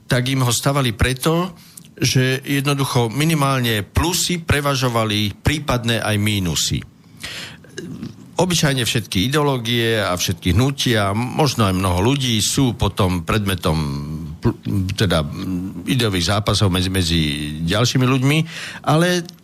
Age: 50-69